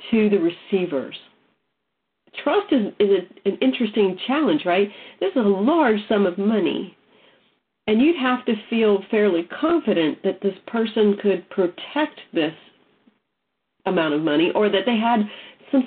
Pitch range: 180-220 Hz